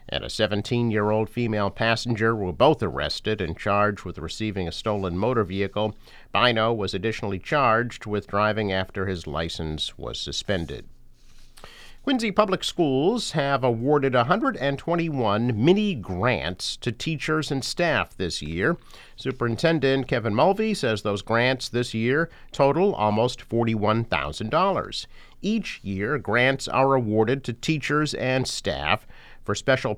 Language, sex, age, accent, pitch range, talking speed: English, male, 50-69, American, 100-130 Hz, 125 wpm